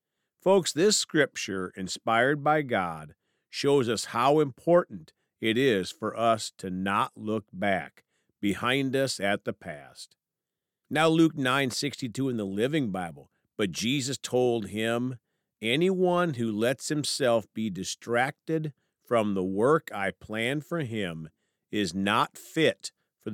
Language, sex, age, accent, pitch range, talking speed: English, male, 50-69, American, 105-145 Hz, 135 wpm